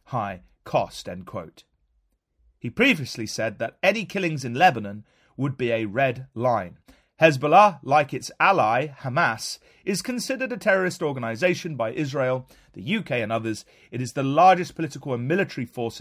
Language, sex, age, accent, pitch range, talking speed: English, male, 30-49, British, 115-175 Hz, 155 wpm